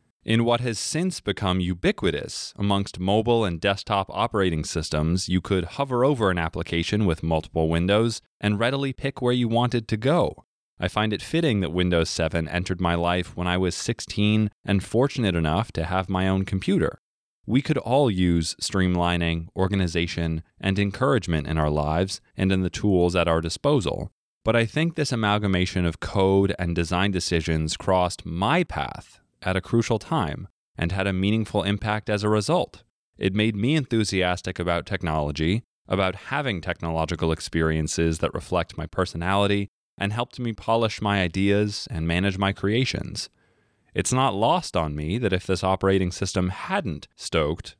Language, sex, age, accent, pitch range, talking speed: English, male, 20-39, American, 85-110 Hz, 165 wpm